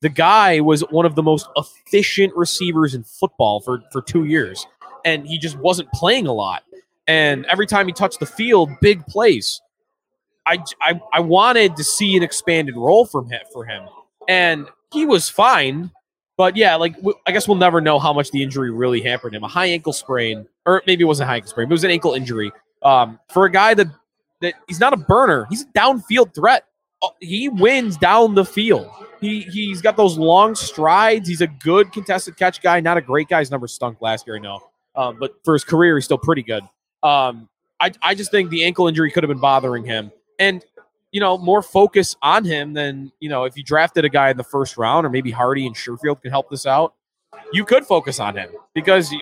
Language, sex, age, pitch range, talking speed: English, male, 20-39, 140-195 Hz, 215 wpm